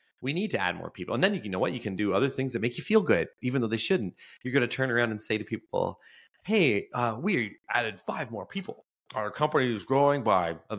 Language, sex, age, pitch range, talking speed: English, male, 30-49, 100-145 Hz, 275 wpm